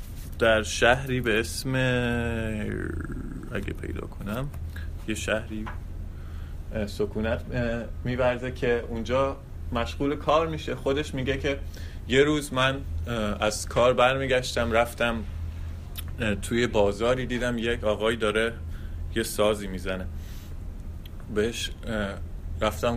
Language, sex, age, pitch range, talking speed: English, male, 20-39, 85-115 Hz, 95 wpm